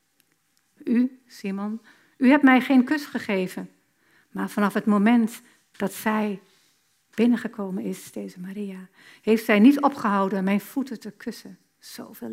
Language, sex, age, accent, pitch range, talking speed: Dutch, female, 60-79, Dutch, 190-240 Hz, 130 wpm